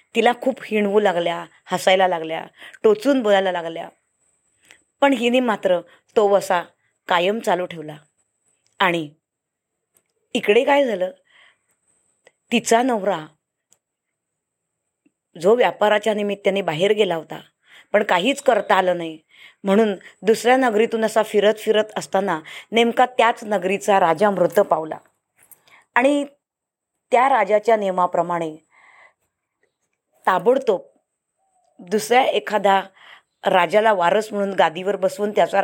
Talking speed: 100 wpm